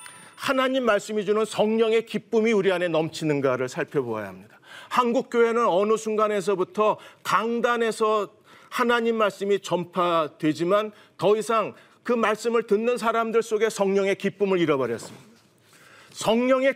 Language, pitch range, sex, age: Korean, 180-230 Hz, male, 40-59